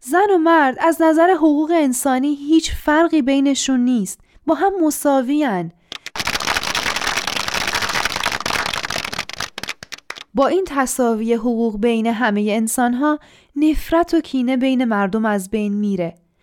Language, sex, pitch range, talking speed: Persian, female, 215-295 Hz, 110 wpm